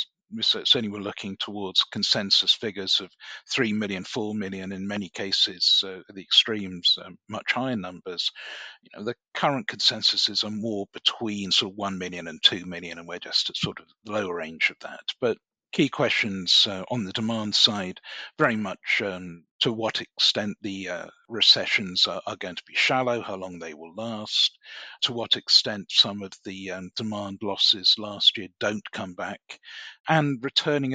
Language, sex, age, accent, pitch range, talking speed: English, male, 50-69, British, 95-115 Hz, 175 wpm